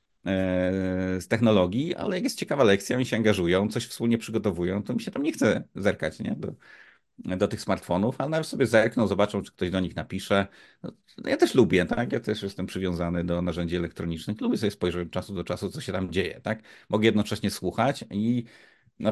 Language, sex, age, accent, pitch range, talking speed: Polish, male, 40-59, native, 95-130 Hz, 200 wpm